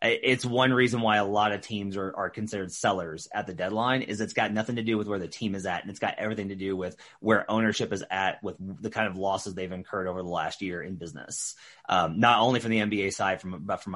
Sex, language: male, English